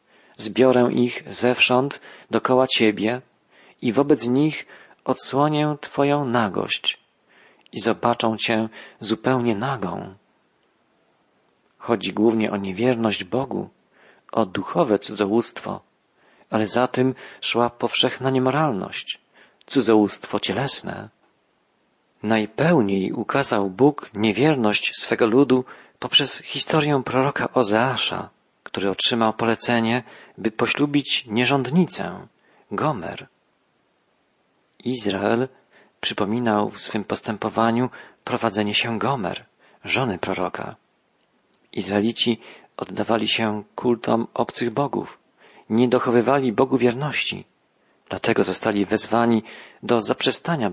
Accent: native